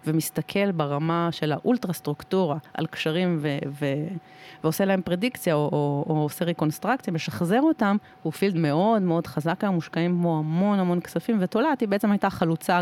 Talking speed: 165 wpm